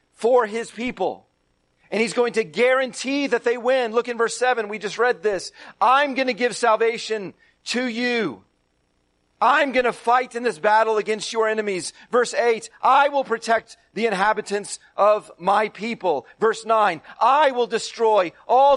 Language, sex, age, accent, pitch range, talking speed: English, male, 40-59, American, 205-245 Hz, 165 wpm